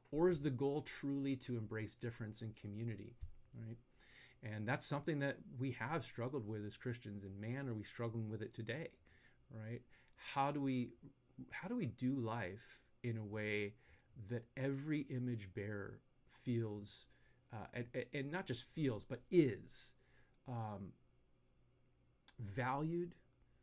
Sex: male